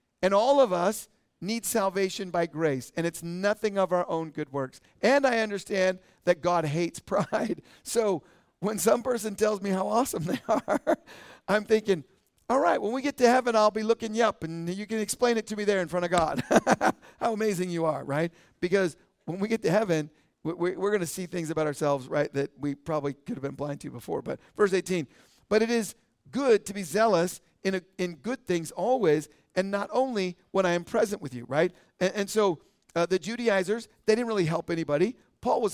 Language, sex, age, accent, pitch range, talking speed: English, male, 50-69, American, 170-215 Hz, 210 wpm